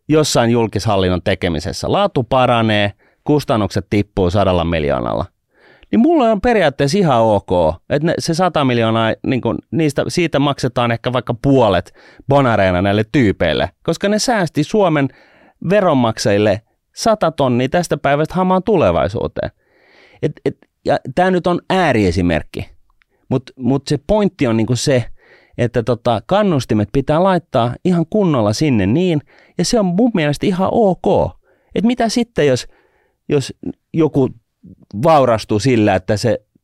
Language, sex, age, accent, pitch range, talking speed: Finnish, male, 30-49, native, 105-165 Hz, 130 wpm